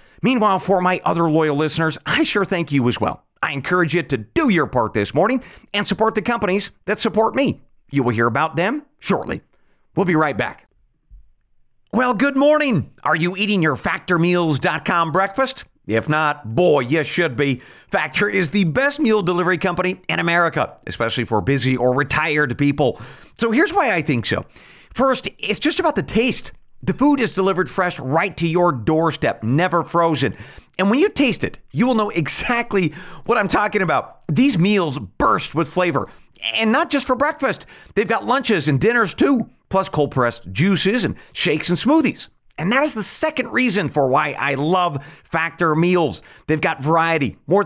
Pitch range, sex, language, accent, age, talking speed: 155-220 Hz, male, English, American, 40-59, 185 wpm